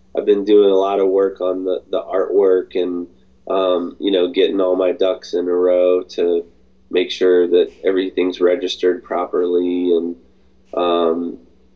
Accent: American